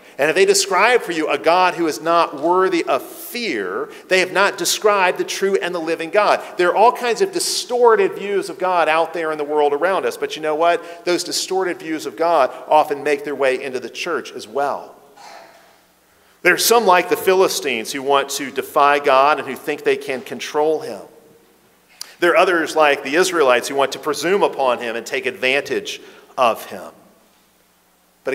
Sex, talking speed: male, 200 wpm